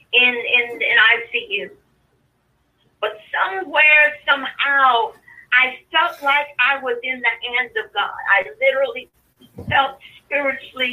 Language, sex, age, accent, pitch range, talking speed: English, female, 50-69, American, 240-305 Hz, 115 wpm